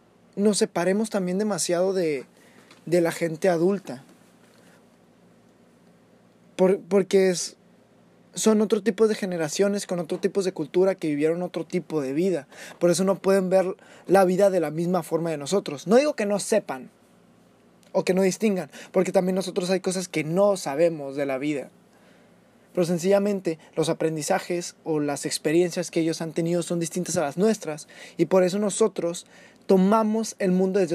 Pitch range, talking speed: 170-215 Hz, 165 wpm